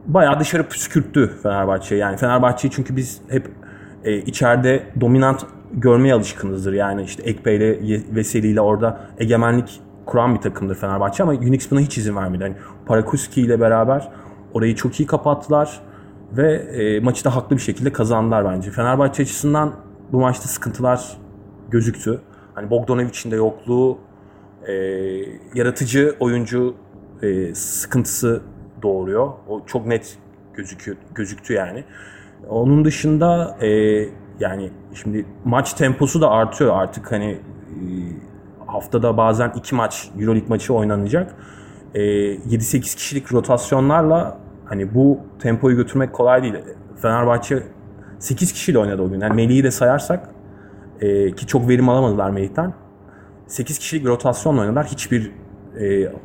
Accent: native